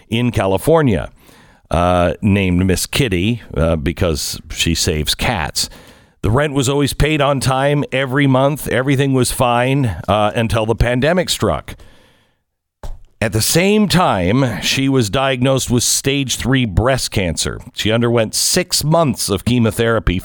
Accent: American